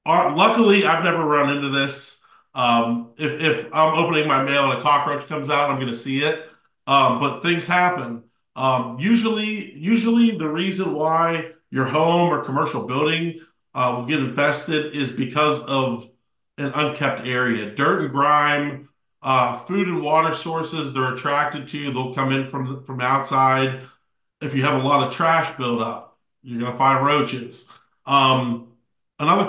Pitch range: 130-165 Hz